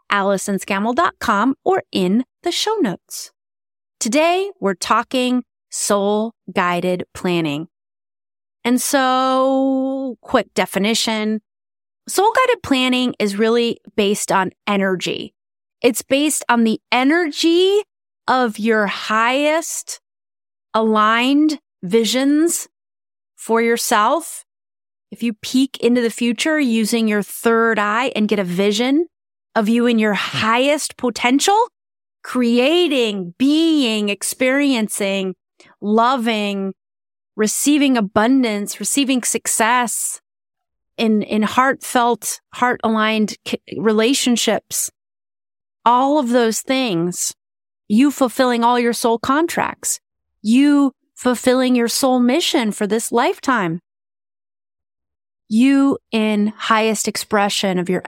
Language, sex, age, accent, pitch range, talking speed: English, female, 30-49, American, 200-260 Hz, 95 wpm